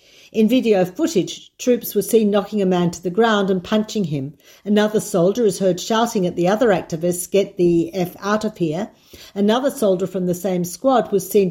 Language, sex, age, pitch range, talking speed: Hebrew, female, 50-69, 175-215 Hz, 200 wpm